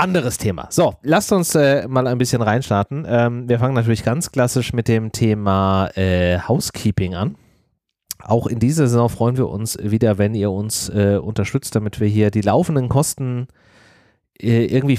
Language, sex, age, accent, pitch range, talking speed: German, male, 30-49, German, 95-125 Hz, 170 wpm